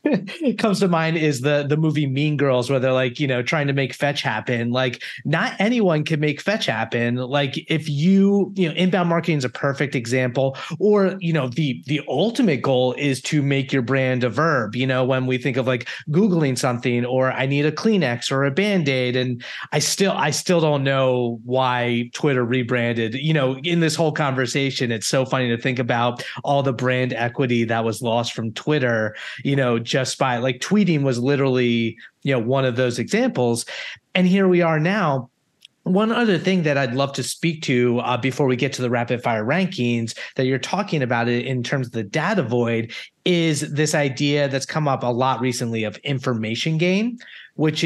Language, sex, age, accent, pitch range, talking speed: English, male, 30-49, American, 125-160 Hz, 205 wpm